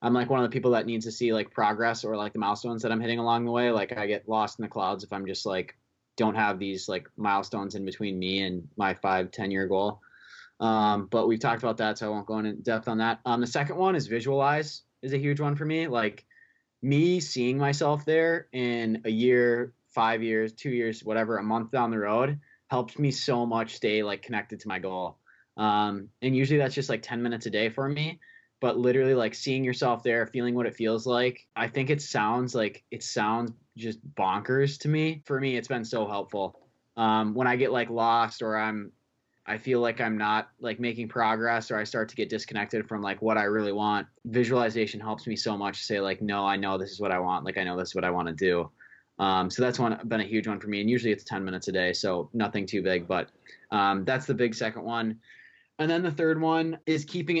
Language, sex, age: English, male, 20-39